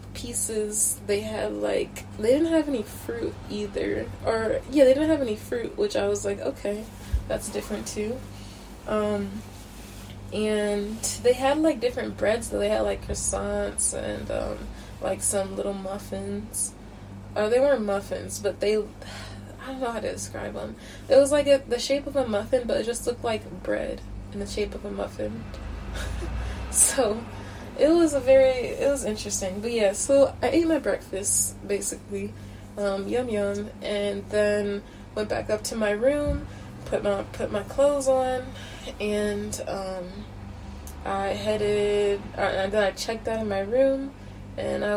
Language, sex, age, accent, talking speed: English, female, 20-39, American, 165 wpm